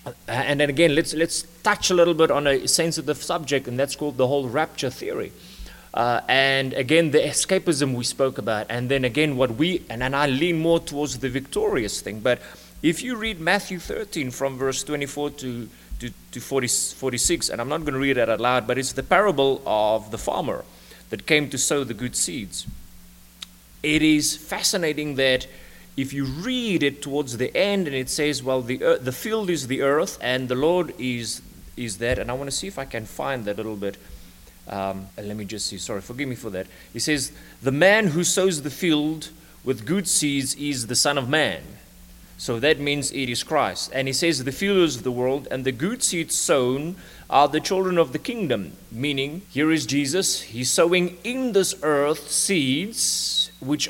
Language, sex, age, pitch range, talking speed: English, male, 30-49, 125-165 Hz, 205 wpm